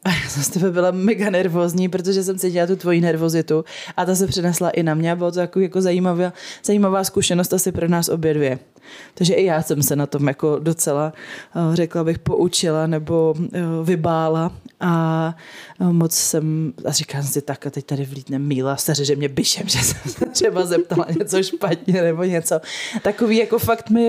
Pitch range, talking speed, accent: 155-175 Hz, 185 wpm, native